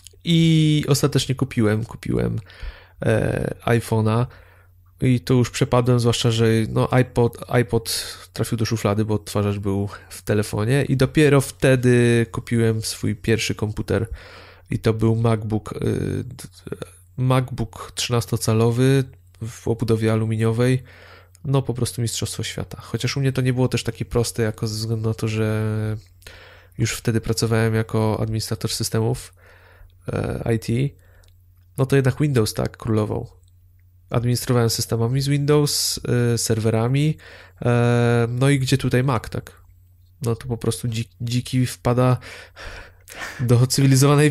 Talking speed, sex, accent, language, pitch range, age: 125 wpm, male, native, Polish, 105-125 Hz, 20-39